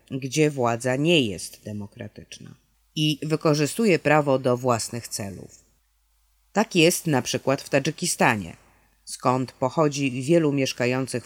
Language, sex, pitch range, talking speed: Polish, female, 125-160 Hz, 110 wpm